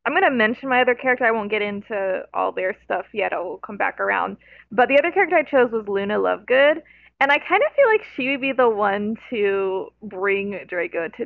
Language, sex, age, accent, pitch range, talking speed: English, female, 20-39, American, 205-255 Hz, 230 wpm